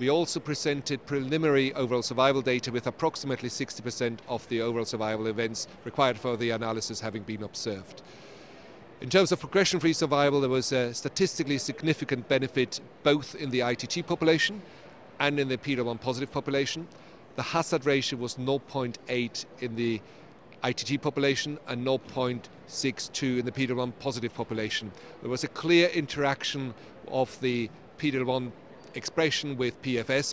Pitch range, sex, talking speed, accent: 120-145 Hz, male, 140 wpm, German